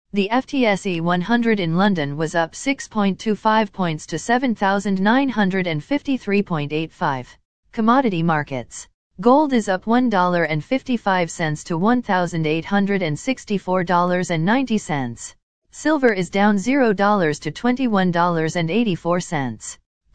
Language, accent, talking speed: English, American, 75 wpm